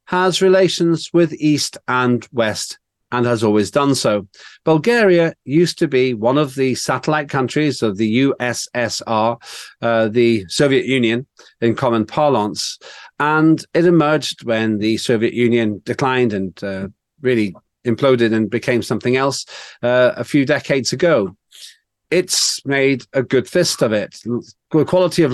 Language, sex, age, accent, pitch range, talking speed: English, male, 40-59, British, 120-160 Hz, 145 wpm